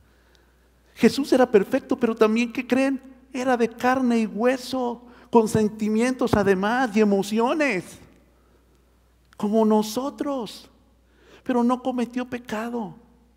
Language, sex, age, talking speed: Spanish, male, 50-69, 105 wpm